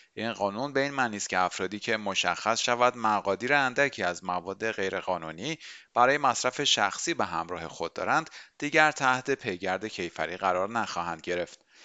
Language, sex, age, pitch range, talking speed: Persian, male, 30-49, 95-125 Hz, 145 wpm